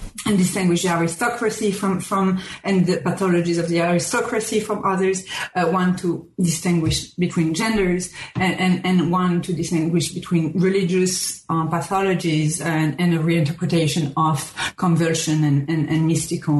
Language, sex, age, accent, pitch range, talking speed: English, female, 40-59, French, 175-210 Hz, 135 wpm